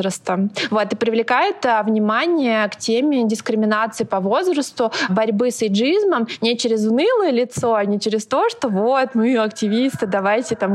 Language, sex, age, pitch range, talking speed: Russian, female, 20-39, 205-245 Hz, 145 wpm